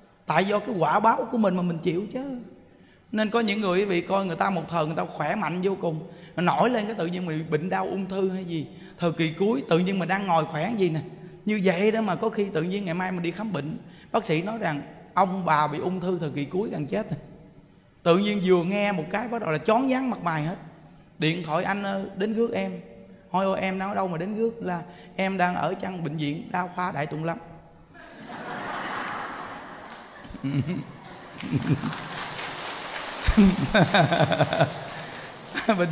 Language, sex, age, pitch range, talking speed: Vietnamese, male, 20-39, 165-205 Hz, 205 wpm